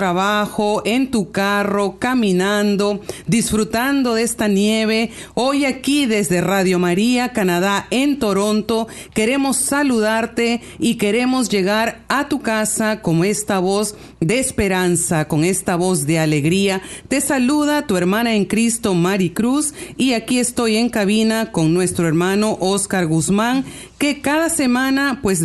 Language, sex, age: Spanish, female, 40-59